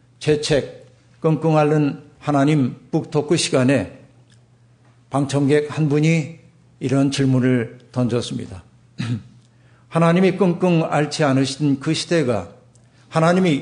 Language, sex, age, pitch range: Korean, male, 50-69, 125-160 Hz